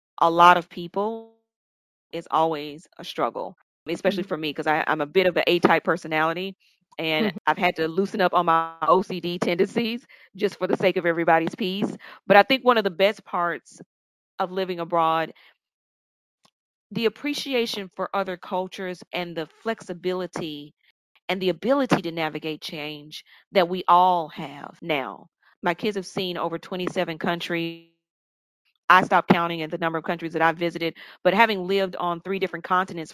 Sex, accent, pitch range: female, American, 165-195 Hz